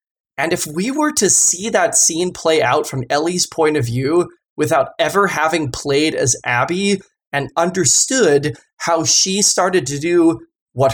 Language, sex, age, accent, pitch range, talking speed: English, male, 20-39, American, 125-175 Hz, 160 wpm